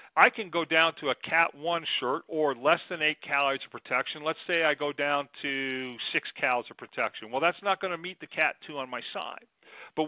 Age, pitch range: 50-69, 135-170 Hz